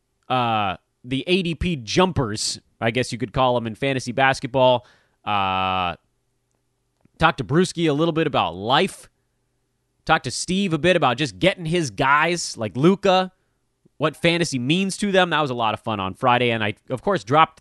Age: 30-49